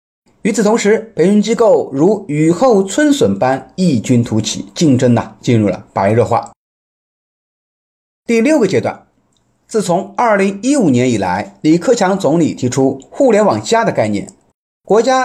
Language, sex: Chinese, male